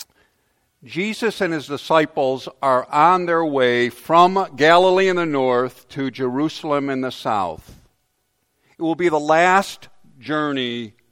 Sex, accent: male, American